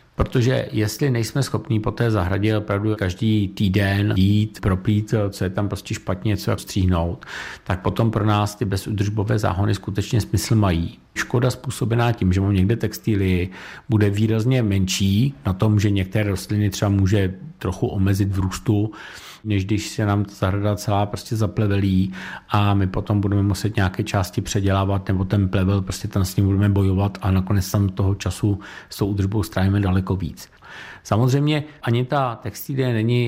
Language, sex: Czech, male